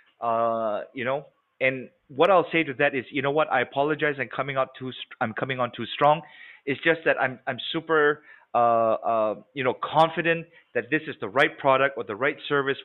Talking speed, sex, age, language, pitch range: 235 wpm, male, 30-49, English, 120-150 Hz